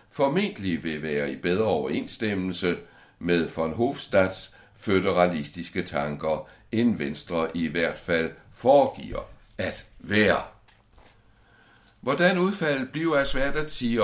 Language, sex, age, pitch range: Danish, male, 60-79, 85-115 Hz